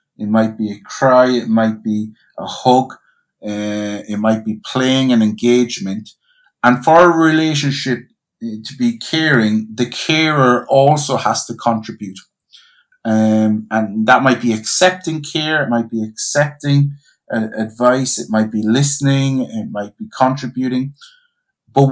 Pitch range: 110-135 Hz